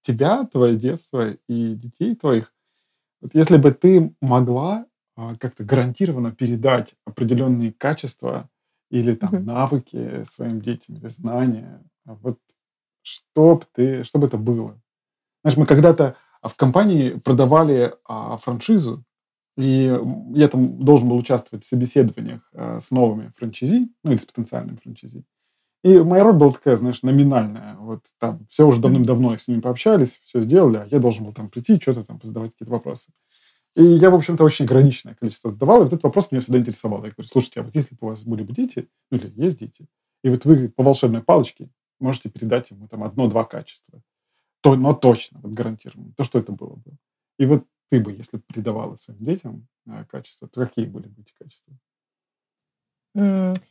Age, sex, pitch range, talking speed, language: 20-39, male, 115-145 Hz, 165 wpm, Russian